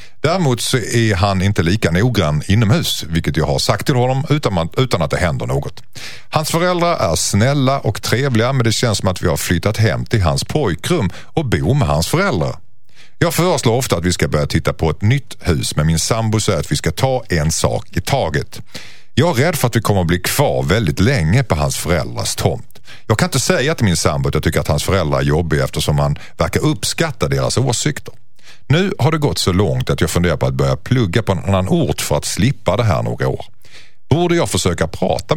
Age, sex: 50-69, male